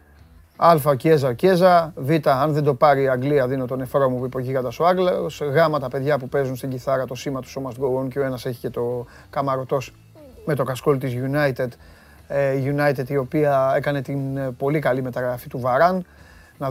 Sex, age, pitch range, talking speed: male, 30-49, 125-150 Hz, 175 wpm